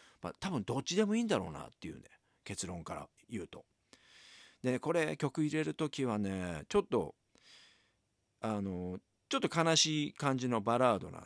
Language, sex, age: Japanese, male, 50-69